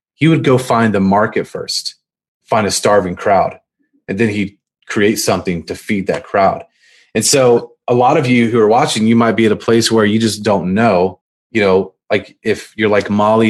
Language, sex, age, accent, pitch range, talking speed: English, male, 30-49, American, 110-135 Hz, 210 wpm